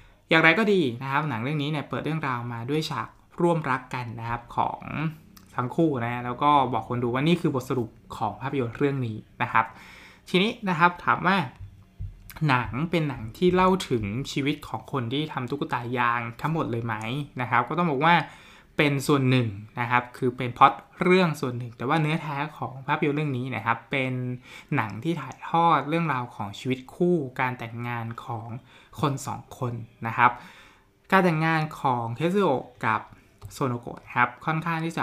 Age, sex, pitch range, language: 20-39, male, 120-150 Hz, Thai